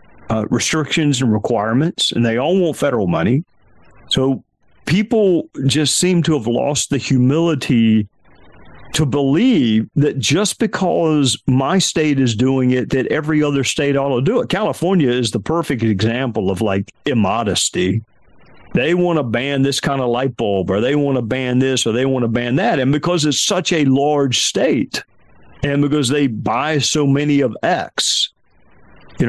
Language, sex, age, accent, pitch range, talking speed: English, male, 50-69, American, 120-155 Hz, 170 wpm